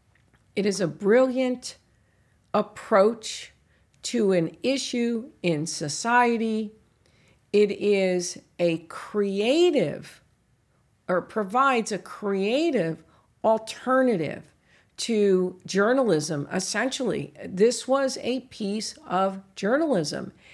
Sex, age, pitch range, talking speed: female, 50-69, 180-240 Hz, 80 wpm